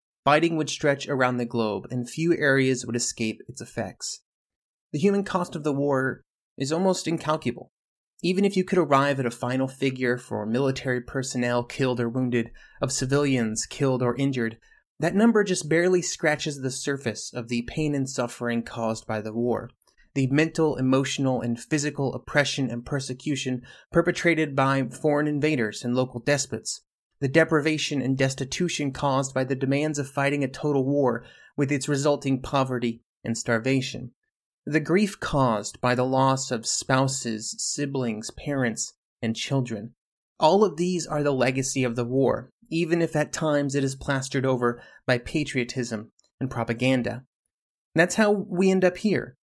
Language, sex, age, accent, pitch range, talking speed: English, male, 30-49, American, 125-155 Hz, 160 wpm